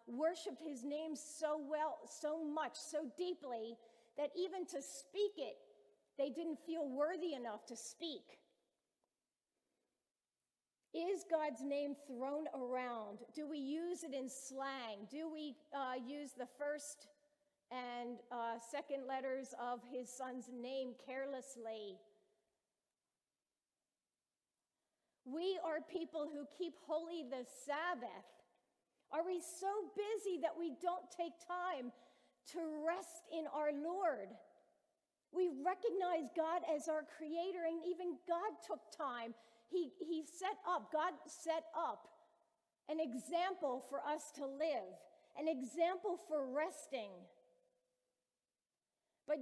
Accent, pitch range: American, 255-330 Hz